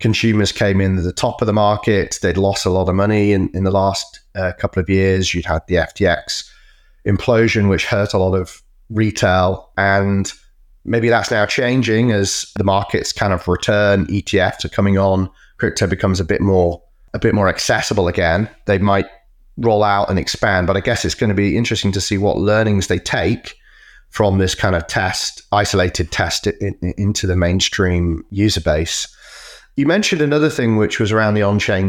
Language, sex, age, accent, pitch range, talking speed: English, male, 30-49, British, 95-110 Hz, 190 wpm